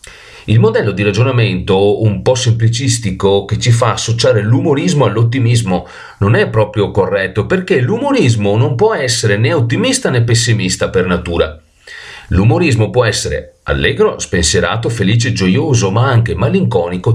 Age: 40-59